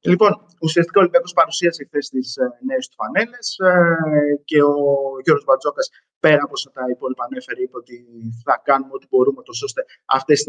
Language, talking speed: Greek, 175 wpm